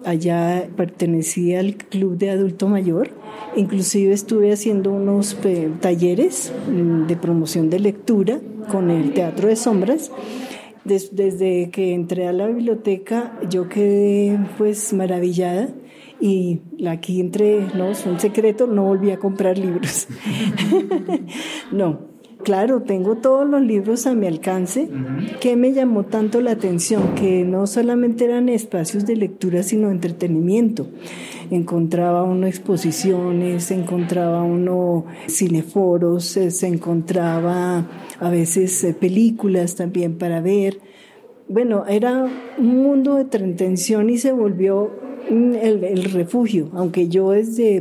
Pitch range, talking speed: 180-220 Hz, 125 wpm